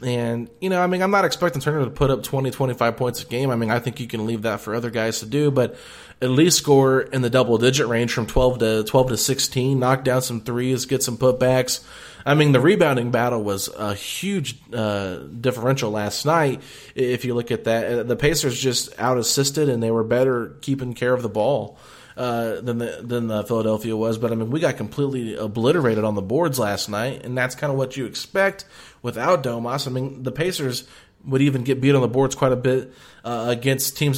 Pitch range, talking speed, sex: 115-135 Hz, 225 wpm, male